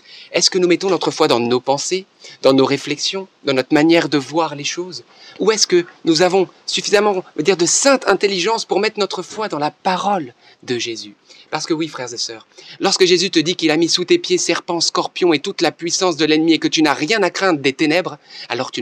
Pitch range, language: 150-235 Hz, French